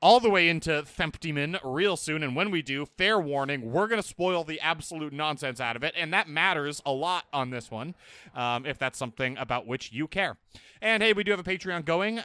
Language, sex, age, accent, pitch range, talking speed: English, male, 30-49, American, 135-185 Hz, 230 wpm